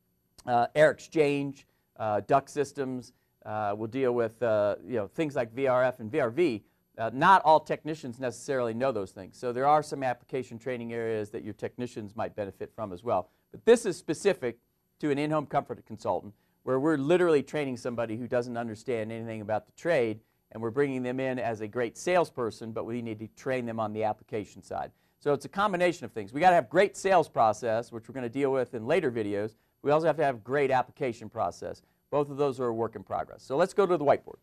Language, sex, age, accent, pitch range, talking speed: English, male, 40-59, American, 120-180 Hz, 215 wpm